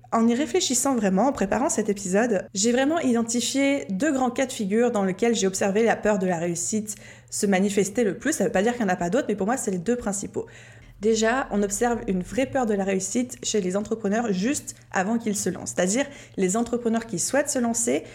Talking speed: 235 wpm